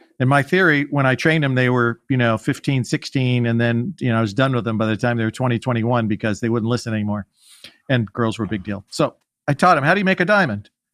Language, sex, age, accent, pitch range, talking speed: English, male, 50-69, American, 125-155 Hz, 275 wpm